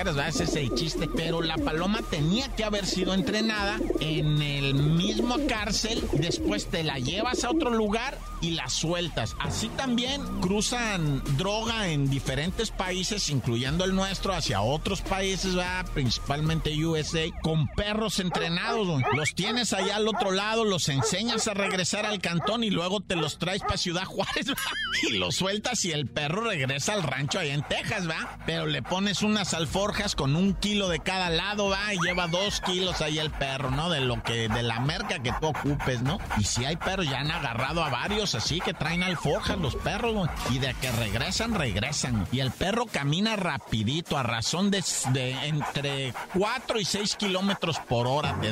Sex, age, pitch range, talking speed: male, 50-69, 140-200 Hz, 185 wpm